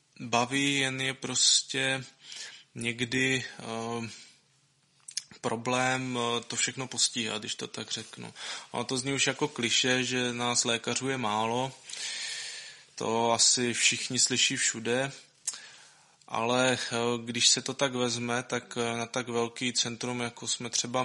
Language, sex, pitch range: Czech, male, 115-125 Hz